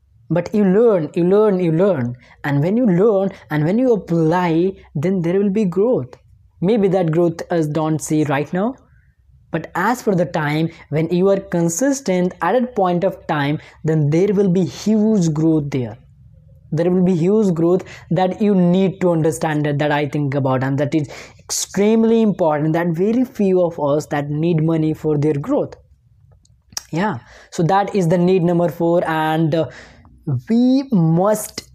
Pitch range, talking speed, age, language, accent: 160-200 Hz, 175 wpm, 20-39, English, Indian